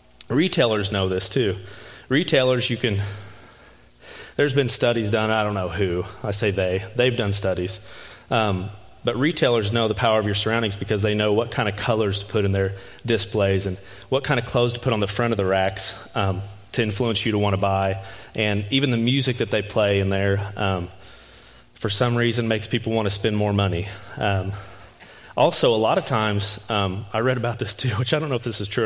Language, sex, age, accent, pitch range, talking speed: English, male, 30-49, American, 100-115 Hz, 215 wpm